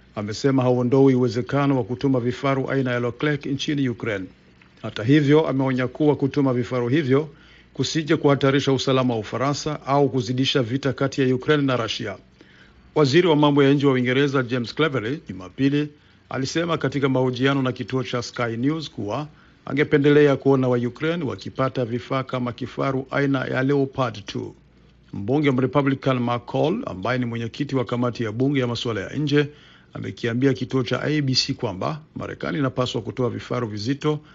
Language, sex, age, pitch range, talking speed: Swahili, male, 50-69, 120-140 Hz, 150 wpm